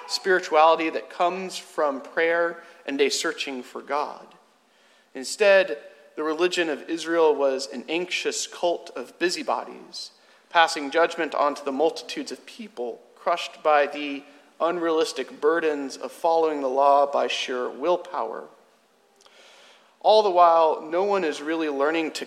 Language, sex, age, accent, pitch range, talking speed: English, male, 40-59, American, 150-180 Hz, 130 wpm